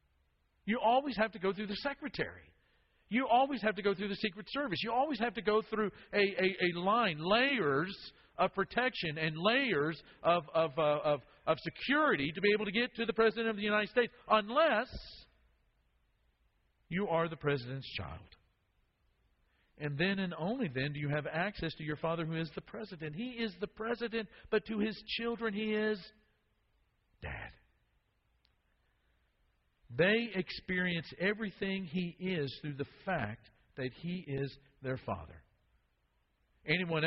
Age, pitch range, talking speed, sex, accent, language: 50-69, 135-210 Hz, 155 wpm, male, American, English